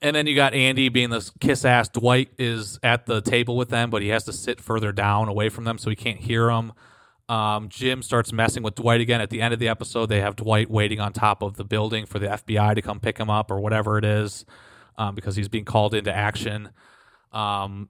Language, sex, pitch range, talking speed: English, male, 105-120 Hz, 240 wpm